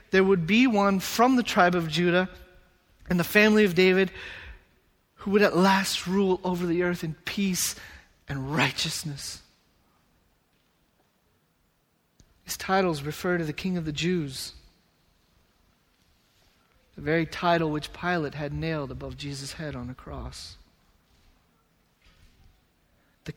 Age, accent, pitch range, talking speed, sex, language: 30-49, American, 150-200 Hz, 125 wpm, male, English